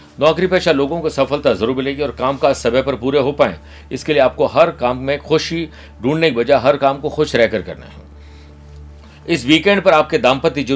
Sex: male